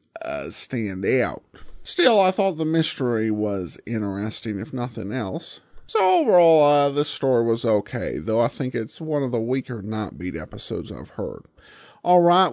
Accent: American